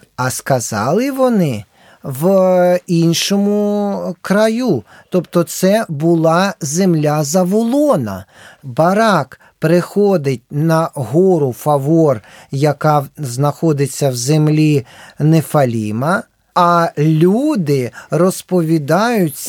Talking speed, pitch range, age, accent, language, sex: 75 wpm, 160-220 Hz, 40-59, native, Ukrainian, male